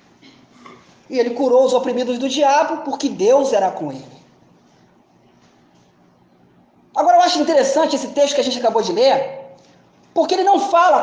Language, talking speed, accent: Portuguese, 150 wpm, Brazilian